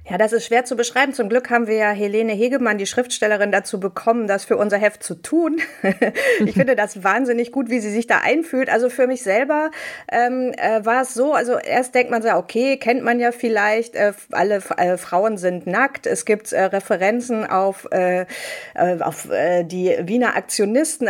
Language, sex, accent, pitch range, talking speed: German, female, German, 200-250 Hz, 195 wpm